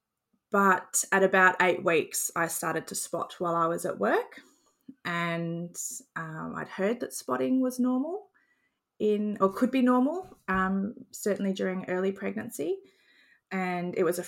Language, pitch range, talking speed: English, 175-230 Hz, 150 wpm